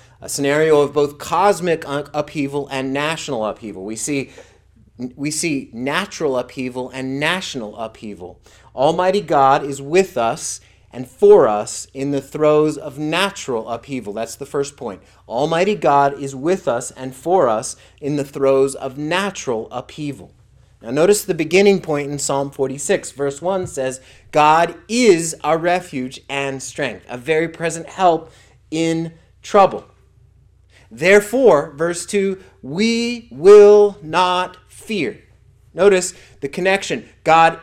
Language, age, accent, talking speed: English, 30-49, American, 130 wpm